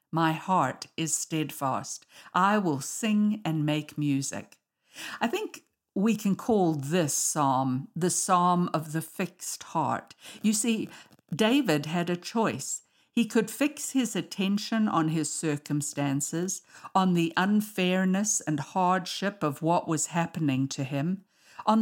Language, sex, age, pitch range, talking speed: English, female, 60-79, 150-200 Hz, 135 wpm